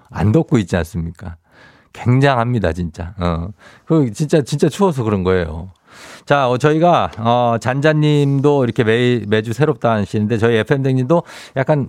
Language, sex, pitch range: Korean, male, 105-155 Hz